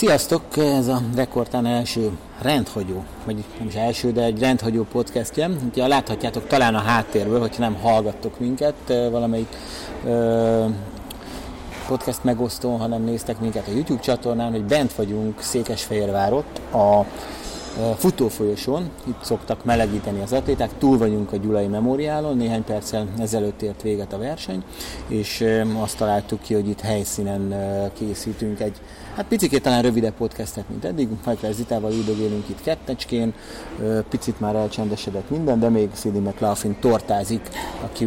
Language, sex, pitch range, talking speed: Hungarian, male, 105-120 Hz, 140 wpm